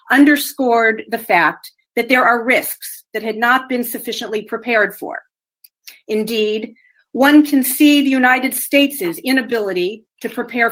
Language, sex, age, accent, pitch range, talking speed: English, female, 40-59, American, 210-275 Hz, 135 wpm